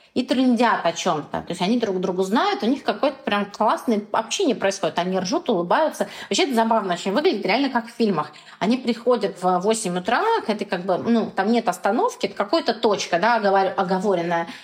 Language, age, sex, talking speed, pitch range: Russian, 20-39, female, 195 wpm, 190-255 Hz